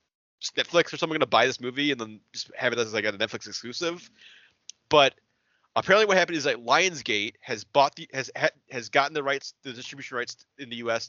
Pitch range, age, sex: 120-150 Hz, 30-49, male